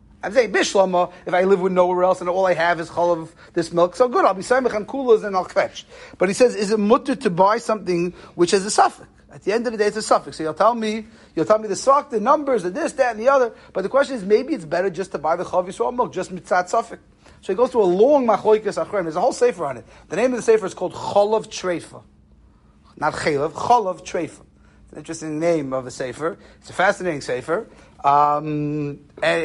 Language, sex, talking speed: English, male, 250 wpm